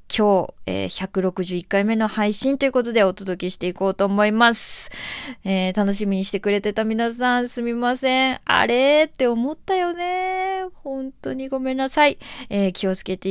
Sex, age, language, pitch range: female, 20-39, Japanese, 190-250 Hz